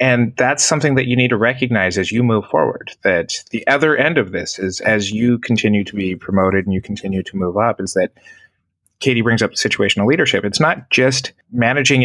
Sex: male